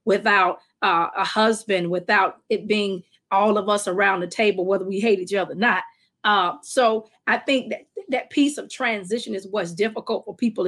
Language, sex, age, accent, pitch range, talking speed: English, female, 40-59, American, 195-240 Hz, 190 wpm